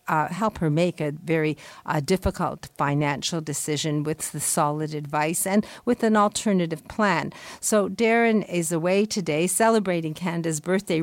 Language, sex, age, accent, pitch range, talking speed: English, female, 50-69, American, 155-200 Hz, 145 wpm